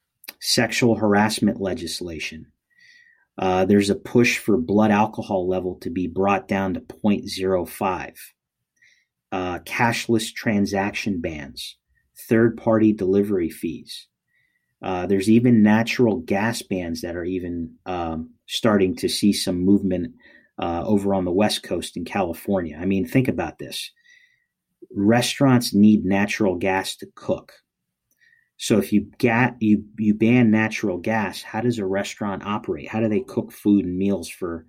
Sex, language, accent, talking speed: male, English, American, 135 wpm